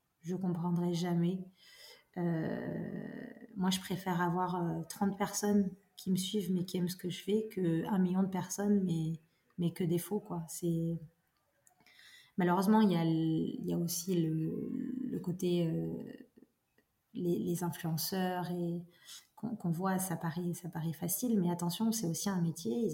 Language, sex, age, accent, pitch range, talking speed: French, female, 30-49, French, 170-200 Hz, 165 wpm